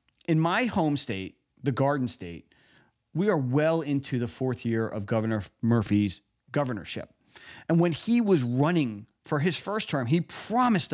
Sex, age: male, 40-59